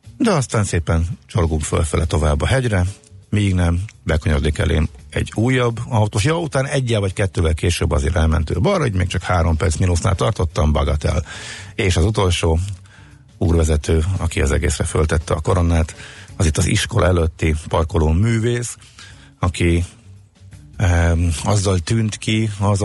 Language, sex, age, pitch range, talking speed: Hungarian, male, 50-69, 80-100 Hz, 145 wpm